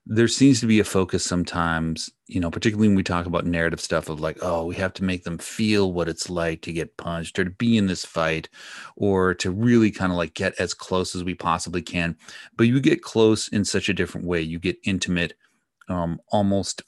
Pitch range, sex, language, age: 85-105 Hz, male, English, 30-49